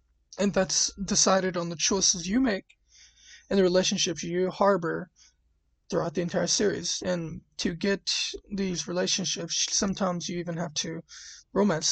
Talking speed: 140 wpm